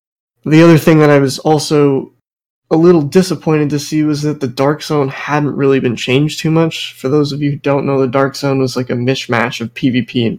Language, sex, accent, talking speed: English, male, American, 230 wpm